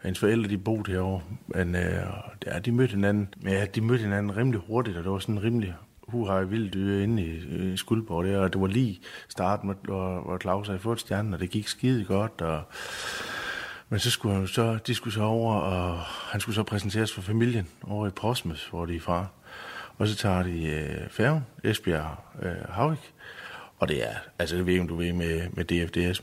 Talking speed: 205 wpm